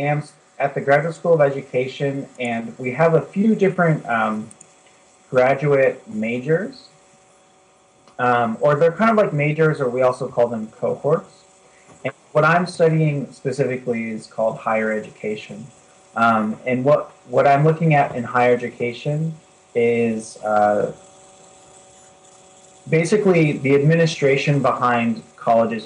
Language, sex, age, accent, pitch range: Korean, male, 30-49, American, 115-150 Hz